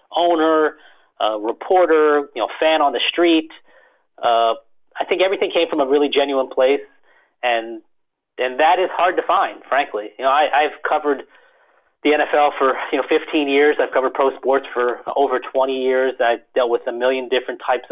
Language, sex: English, male